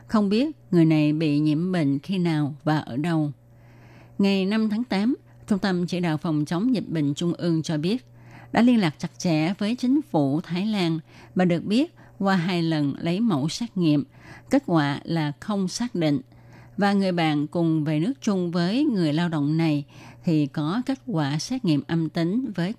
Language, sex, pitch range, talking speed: Vietnamese, female, 150-195 Hz, 195 wpm